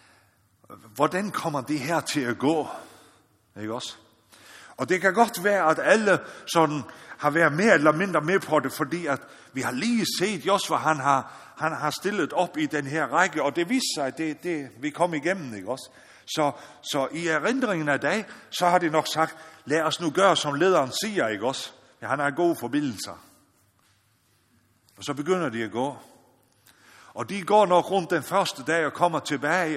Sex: male